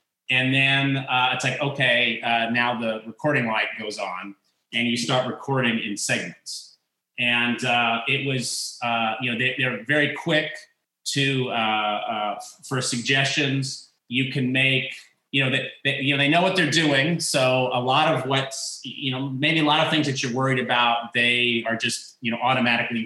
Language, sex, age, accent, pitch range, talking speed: English, male, 30-49, American, 120-145 Hz, 185 wpm